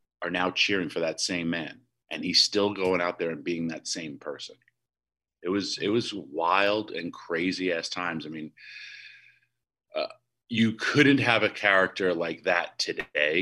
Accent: American